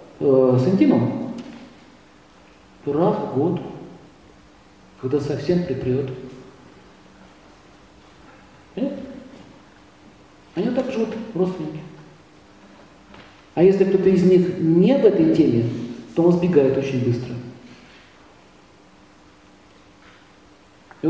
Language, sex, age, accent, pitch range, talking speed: Russian, male, 40-59, native, 130-185 Hz, 80 wpm